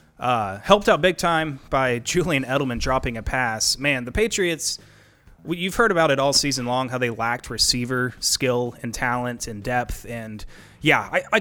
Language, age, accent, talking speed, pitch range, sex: English, 30-49, American, 185 wpm, 120-155 Hz, male